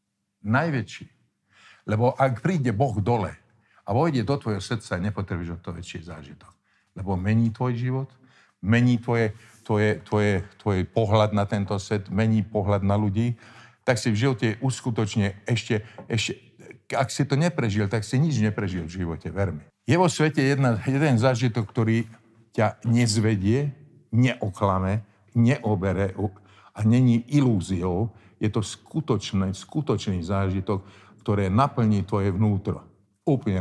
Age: 50-69